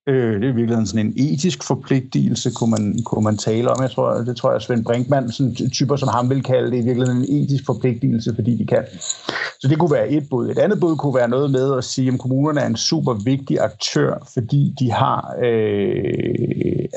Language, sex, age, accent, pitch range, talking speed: Danish, male, 60-79, native, 115-140 Hz, 210 wpm